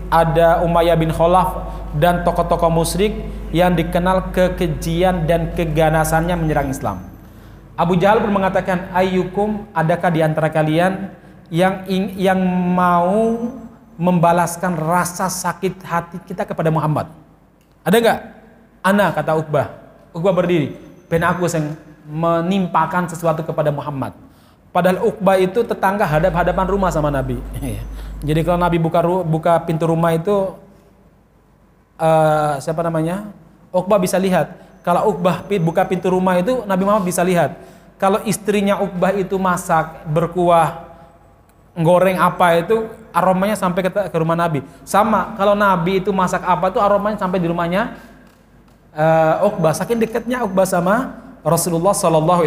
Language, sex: Indonesian, male